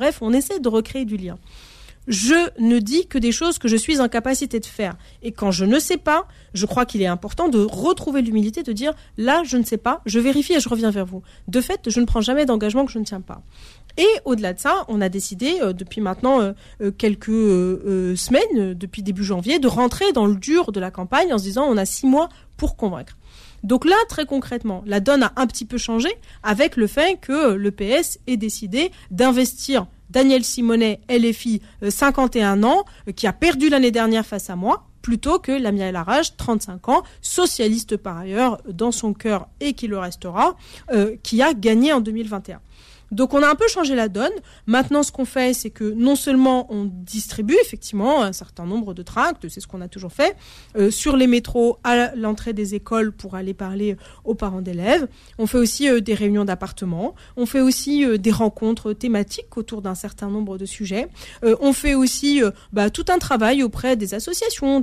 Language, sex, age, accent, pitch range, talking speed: French, female, 40-59, French, 205-275 Hz, 210 wpm